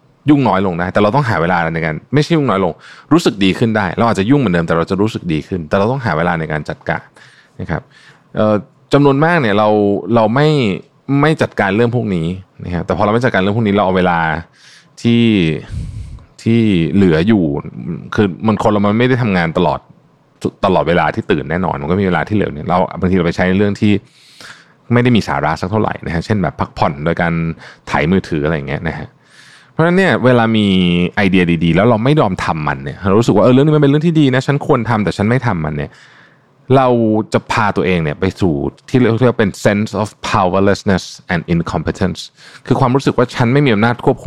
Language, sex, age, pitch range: Thai, male, 20-39, 90-130 Hz